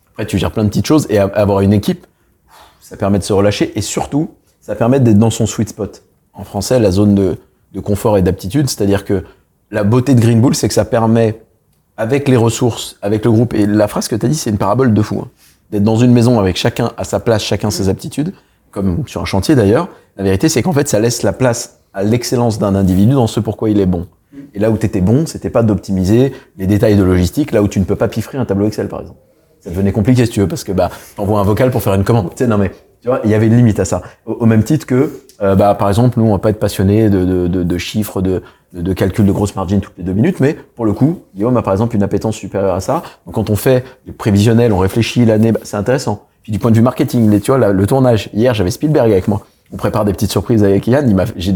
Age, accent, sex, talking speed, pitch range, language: 30-49, French, male, 275 wpm, 100-120 Hz, French